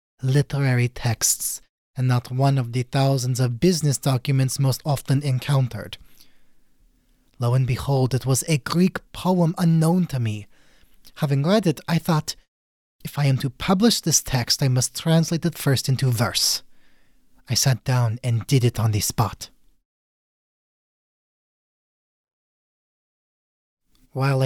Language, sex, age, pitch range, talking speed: English, male, 30-49, 120-165 Hz, 130 wpm